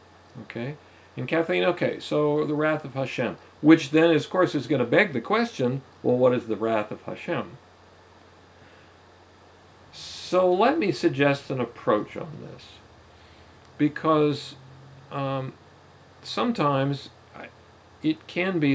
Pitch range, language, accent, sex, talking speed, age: 95-135 Hz, English, American, male, 130 wpm, 50-69